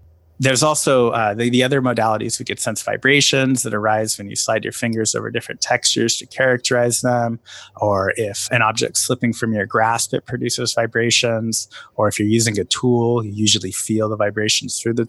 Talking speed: 190 wpm